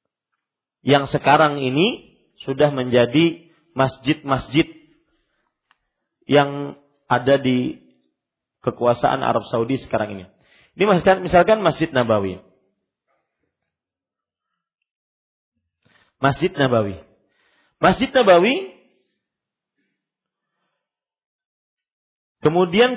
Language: Malay